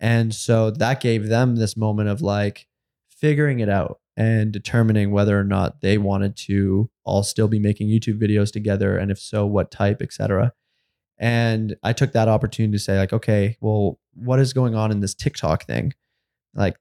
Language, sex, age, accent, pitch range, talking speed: English, male, 20-39, American, 100-115 Hz, 190 wpm